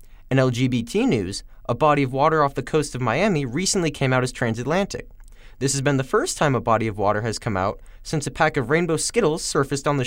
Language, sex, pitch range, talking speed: English, male, 115-150 Hz, 230 wpm